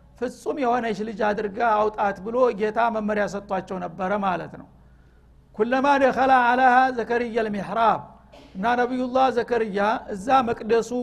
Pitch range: 210-250 Hz